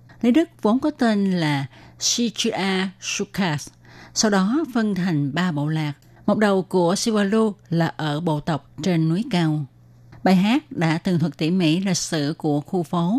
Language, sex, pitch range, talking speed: Vietnamese, female, 150-200 Hz, 175 wpm